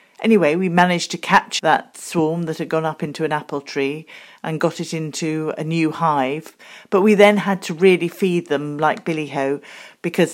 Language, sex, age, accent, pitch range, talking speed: English, female, 40-59, British, 150-175 Hz, 195 wpm